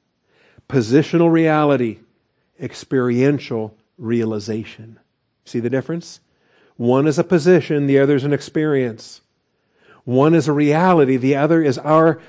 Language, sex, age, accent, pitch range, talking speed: English, male, 50-69, American, 115-145 Hz, 115 wpm